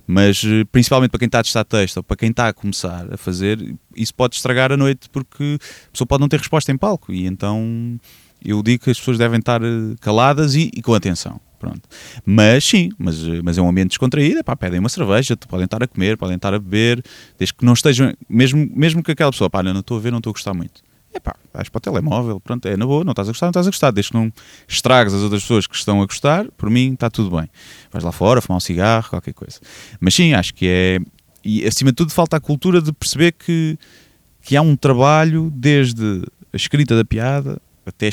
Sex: male